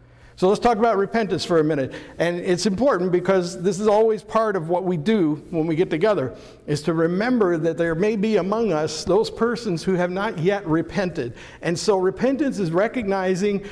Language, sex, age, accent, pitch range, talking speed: English, male, 60-79, American, 160-195 Hz, 195 wpm